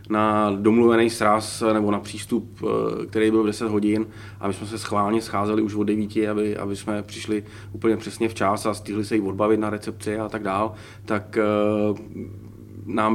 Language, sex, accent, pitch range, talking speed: Czech, male, native, 105-110 Hz, 180 wpm